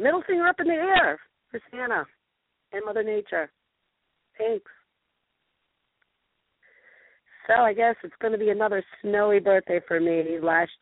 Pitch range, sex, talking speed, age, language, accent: 160-230 Hz, female, 140 wpm, 40-59, English, American